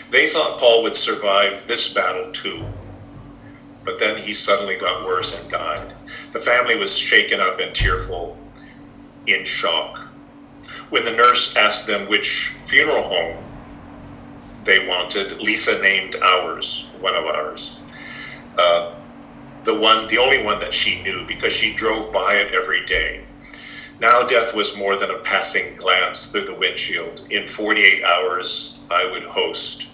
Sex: male